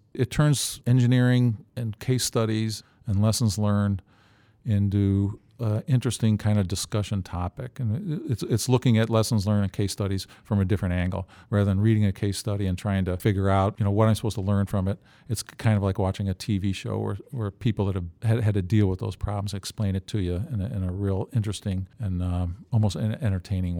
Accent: American